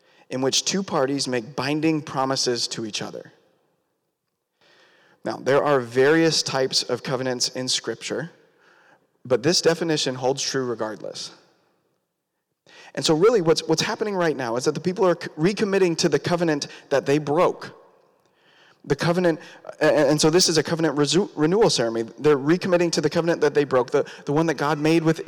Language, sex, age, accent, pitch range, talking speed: English, male, 30-49, American, 135-175 Hz, 170 wpm